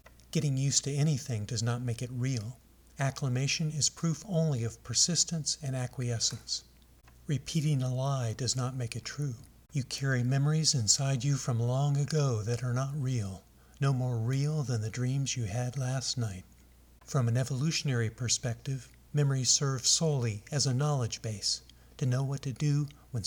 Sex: male